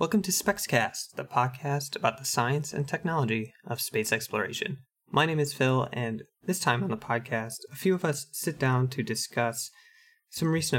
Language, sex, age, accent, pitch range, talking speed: English, male, 20-39, American, 120-140 Hz, 185 wpm